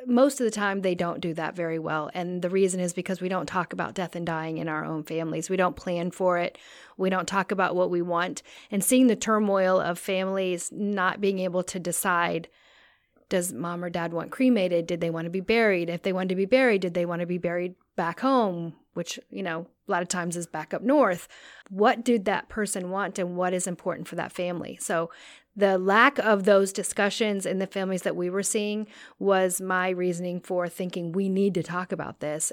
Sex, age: female, 30-49